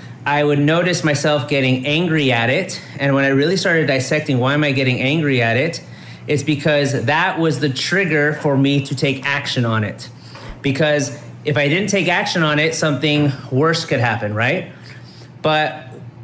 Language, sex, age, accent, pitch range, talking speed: English, male, 30-49, American, 130-160 Hz, 175 wpm